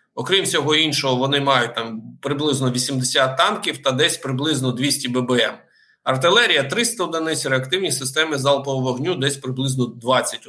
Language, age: Ukrainian, 50-69